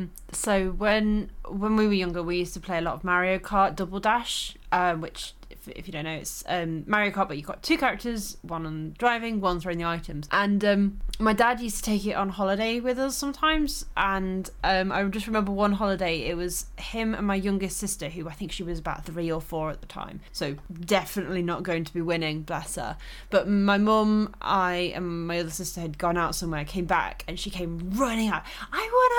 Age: 20-39